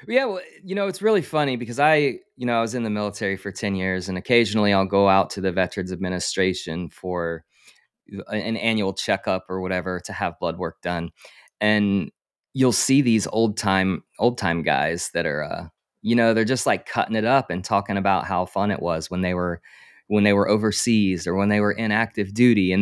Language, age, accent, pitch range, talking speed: English, 20-39, American, 95-125 Hz, 215 wpm